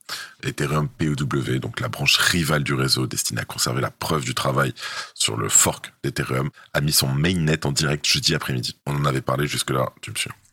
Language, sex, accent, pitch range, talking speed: French, male, French, 70-75 Hz, 200 wpm